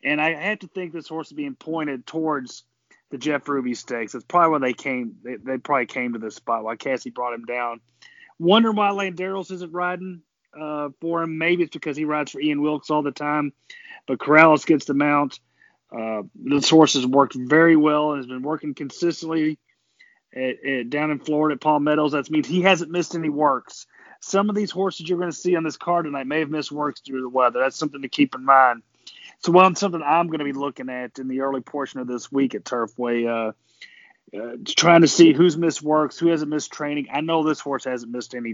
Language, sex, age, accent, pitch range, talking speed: English, male, 30-49, American, 130-160 Hz, 230 wpm